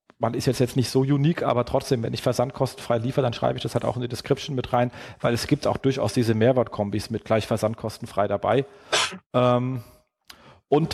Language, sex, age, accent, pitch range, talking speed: German, male, 40-59, German, 115-135 Hz, 190 wpm